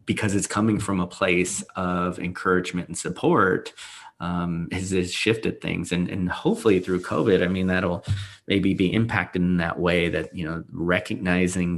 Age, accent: 30-49, American